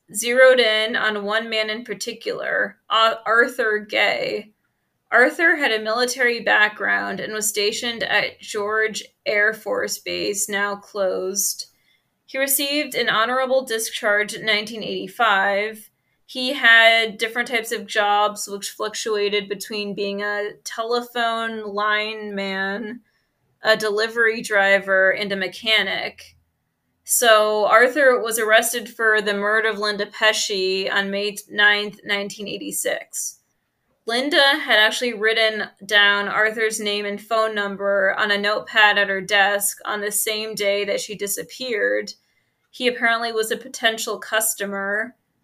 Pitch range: 205-225 Hz